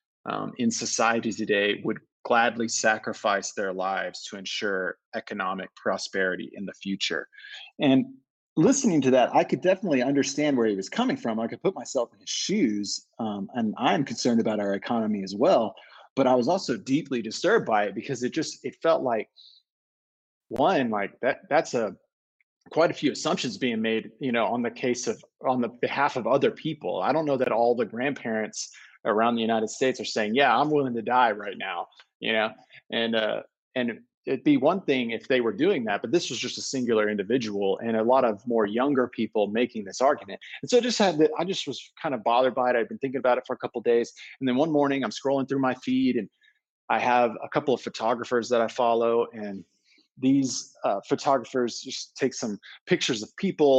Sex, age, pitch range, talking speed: male, 30-49, 115-145 Hz, 205 wpm